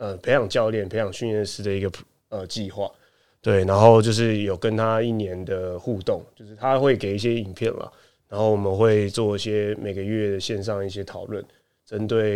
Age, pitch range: 20-39, 100-115 Hz